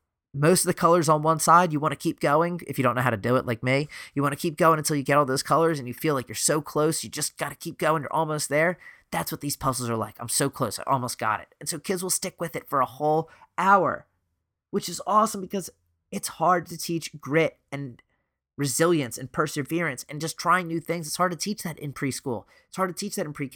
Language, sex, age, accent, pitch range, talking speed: English, male, 30-49, American, 120-155 Hz, 265 wpm